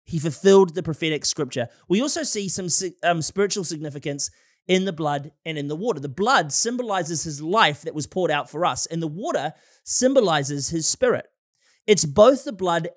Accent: Australian